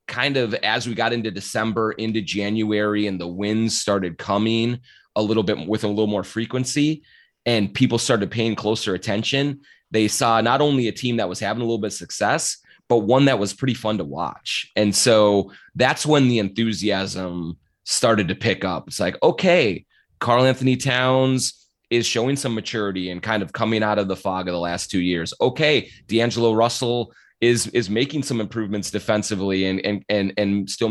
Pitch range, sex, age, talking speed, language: 95-115 Hz, male, 30-49, 190 wpm, English